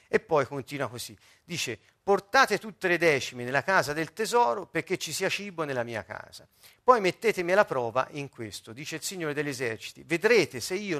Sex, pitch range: male, 130-190 Hz